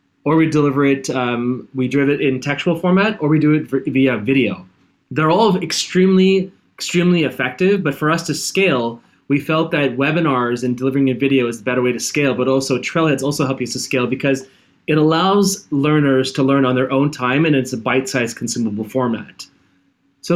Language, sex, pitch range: English, male, 125-155 Hz